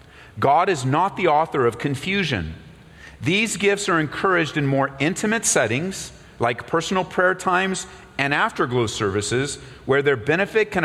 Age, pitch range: 40-59, 120-165 Hz